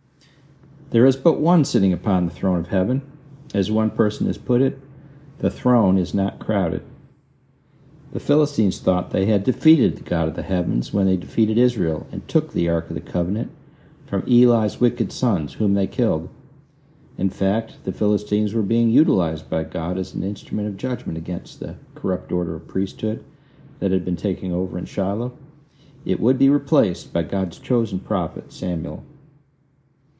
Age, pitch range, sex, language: 50-69, 95-140 Hz, male, English